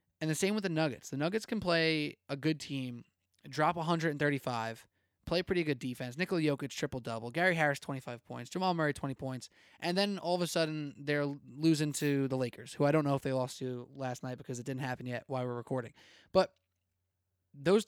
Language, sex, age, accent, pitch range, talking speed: English, male, 20-39, American, 130-165 Hz, 210 wpm